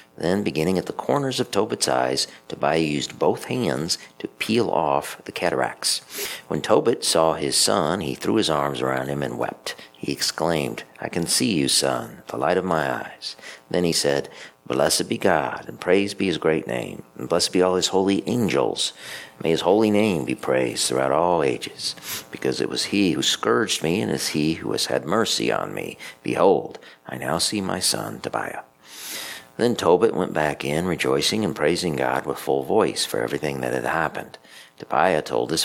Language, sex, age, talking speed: English, male, 50-69, 190 wpm